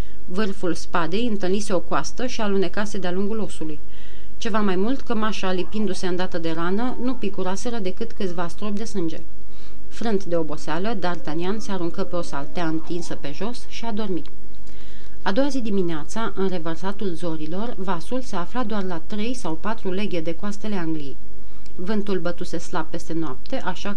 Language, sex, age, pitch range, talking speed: Romanian, female, 30-49, 170-210 Hz, 165 wpm